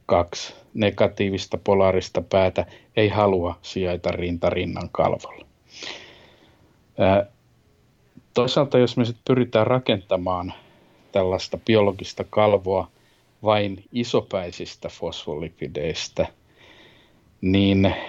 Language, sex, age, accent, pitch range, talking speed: Finnish, male, 50-69, native, 95-110 Hz, 75 wpm